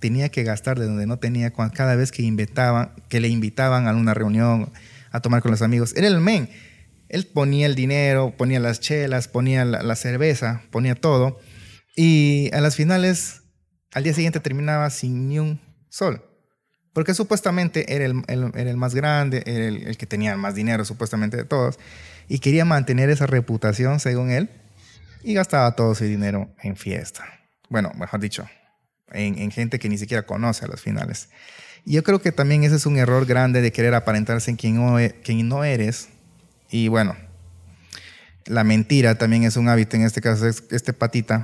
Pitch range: 110-145 Hz